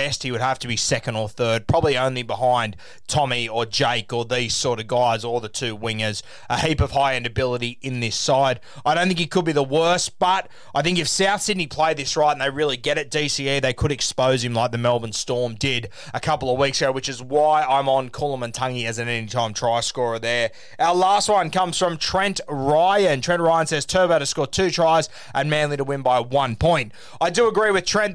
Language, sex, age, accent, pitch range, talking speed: English, male, 20-39, Australian, 125-155 Hz, 235 wpm